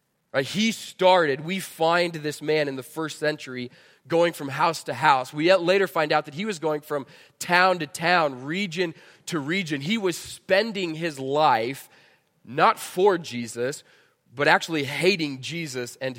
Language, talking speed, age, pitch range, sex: English, 165 wpm, 20-39, 135-170 Hz, male